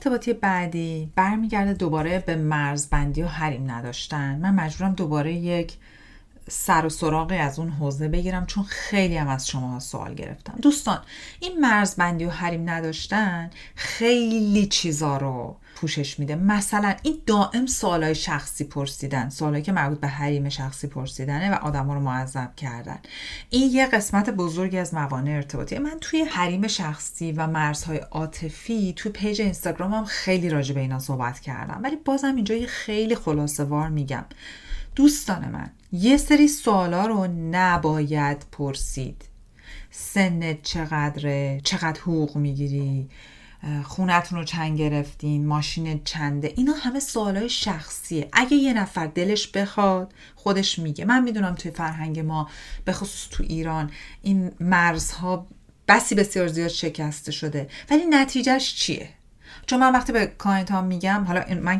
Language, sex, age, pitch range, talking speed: Persian, female, 40-59, 150-205 Hz, 145 wpm